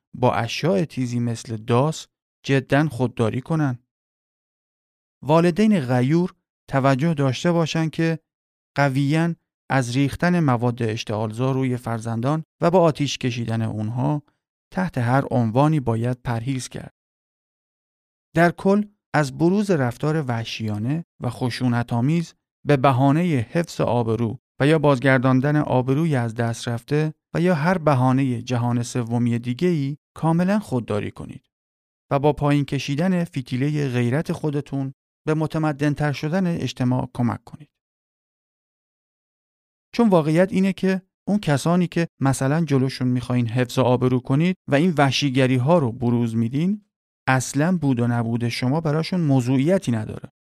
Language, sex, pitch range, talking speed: Persian, male, 125-160 Hz, 120 wpm